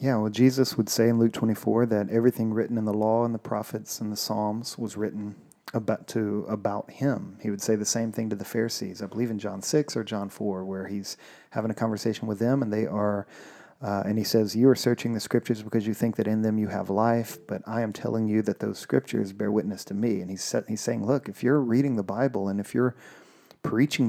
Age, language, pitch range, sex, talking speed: 40-59, English, 105-120 Hz, male, 245 wpm